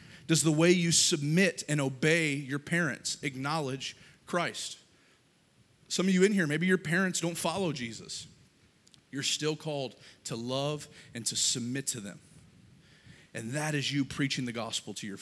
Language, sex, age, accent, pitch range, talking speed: English, male, 30-49, American, 135-170 Hz, 160 wpm